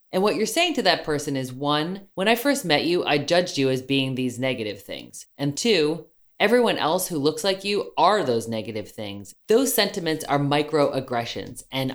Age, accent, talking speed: 20-39, American, 195 wpm